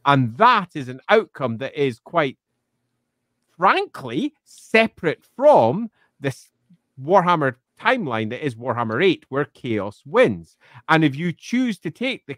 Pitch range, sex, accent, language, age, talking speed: 125-190 Hz, male, British, English, 40-59, 135 wpm